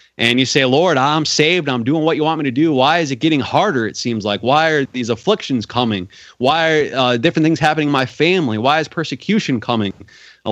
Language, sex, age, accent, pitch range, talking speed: English, male, 30-49, American, 125-165 Hz, 235 wpm